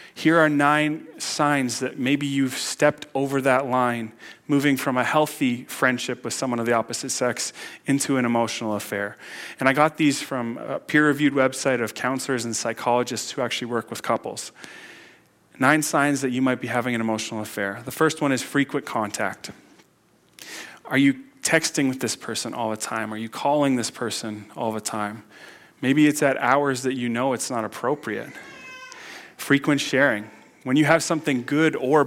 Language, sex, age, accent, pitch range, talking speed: English, male, 30-49, American, 120-145 Hz, 180 wpm